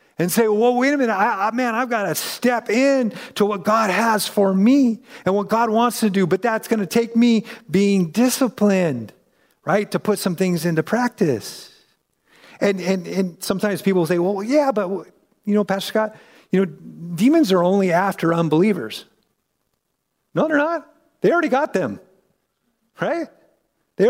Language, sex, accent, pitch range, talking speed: English, male, American, 150-215 Hz, 175 wpm